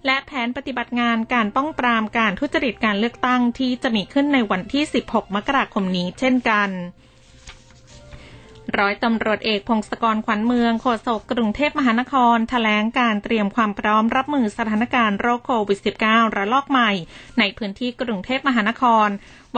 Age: 20-39